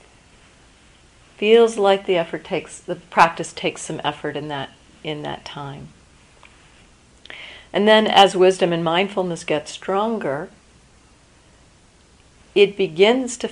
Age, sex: 50-69, female